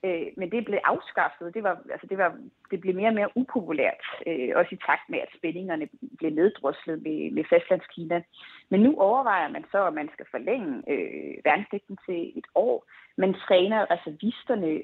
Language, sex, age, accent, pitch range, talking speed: Danish, female, 30-49, native, 175-235 Hz, 170 wpm